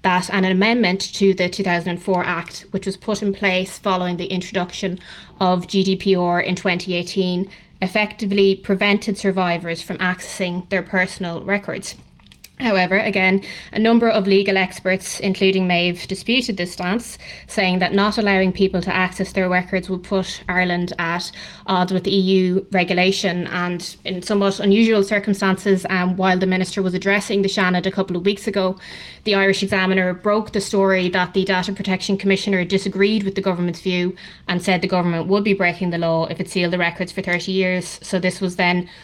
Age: 20-39